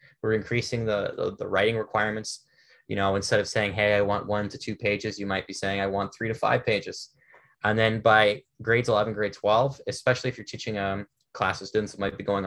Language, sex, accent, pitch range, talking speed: English, male, American, 100-125 Hz, 230 wpm